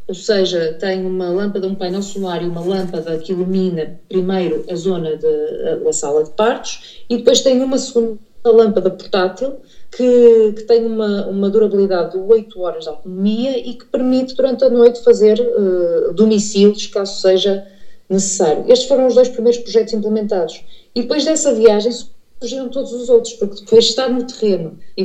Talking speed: 170 wpm